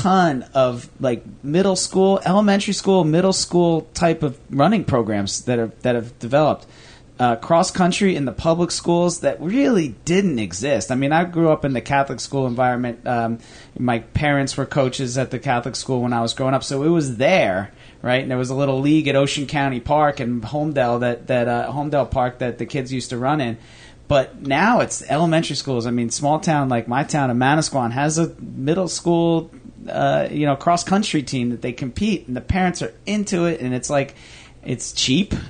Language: English